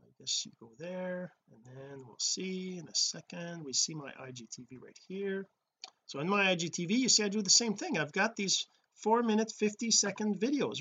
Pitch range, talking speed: 155-210 Hz, 200 wpm